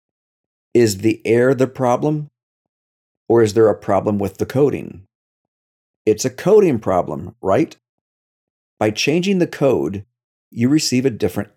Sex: male